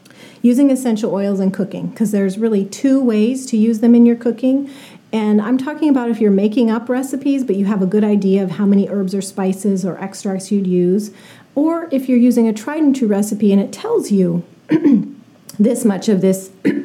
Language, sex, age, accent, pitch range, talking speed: English, female, 40-59, American, 190-240 Hz, 205 wpm